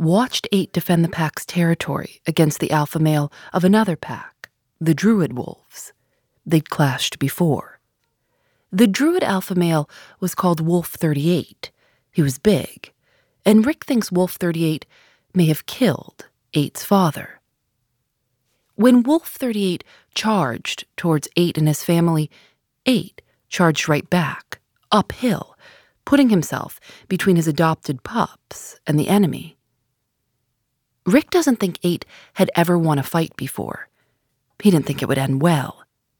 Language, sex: English, female